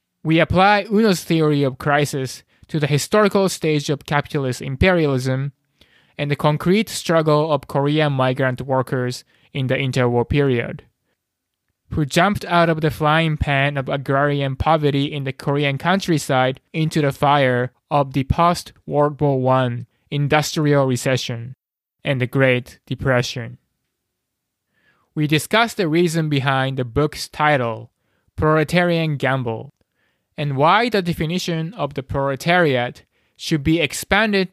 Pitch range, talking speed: 130-160 Hz, 125 wpm